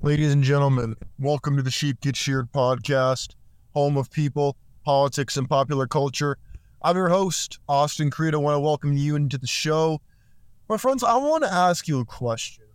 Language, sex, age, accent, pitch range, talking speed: English, male, 20-39, American, 125-165 Hz, 185 wpm